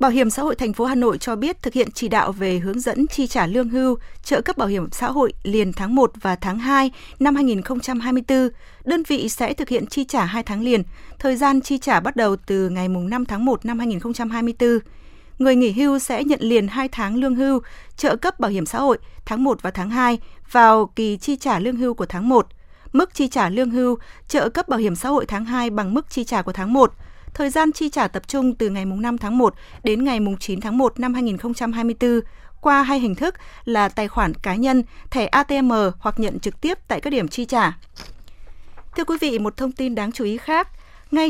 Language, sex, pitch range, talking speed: Vietnamese, female, 215-265 Hz, 230 wpm